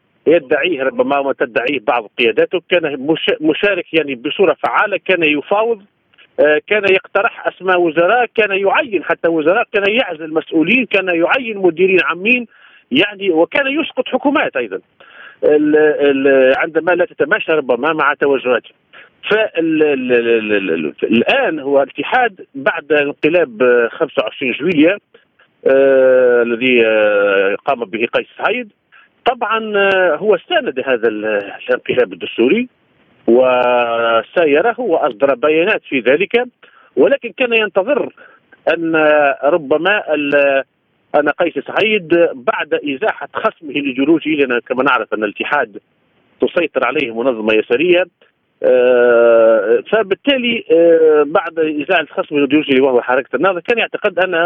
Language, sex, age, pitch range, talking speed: Arabic, male, 50-69, 145-235 Hz, 100 wpm